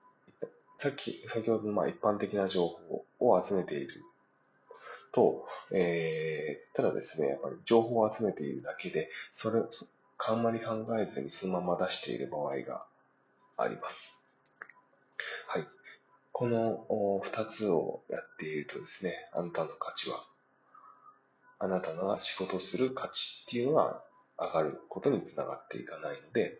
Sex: male